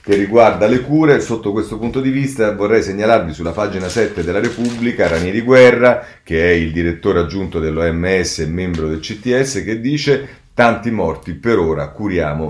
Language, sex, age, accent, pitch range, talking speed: Italian, male, 40-59, native, 85-120 Hz, 175 wpm